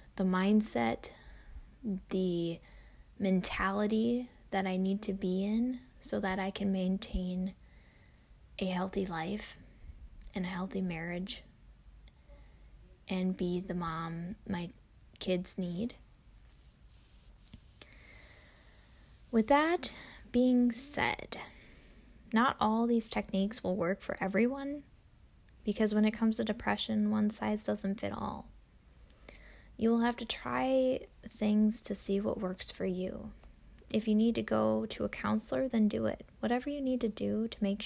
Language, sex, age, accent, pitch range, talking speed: English, female, 10-29, American, 180-220 Hz, 130 wpm